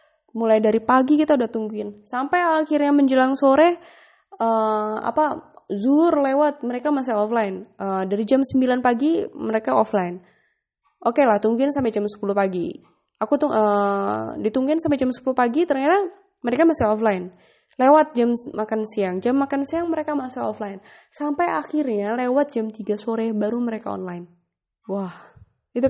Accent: native